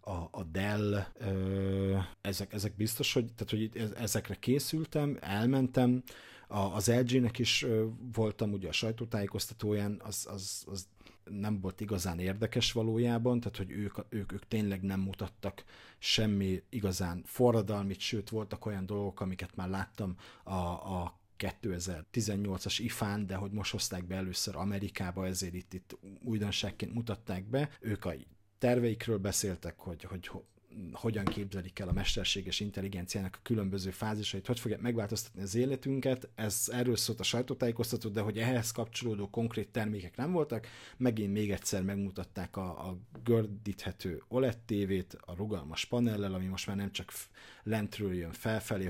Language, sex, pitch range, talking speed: Hungarian, male, 95-115 Hz, 140 wpm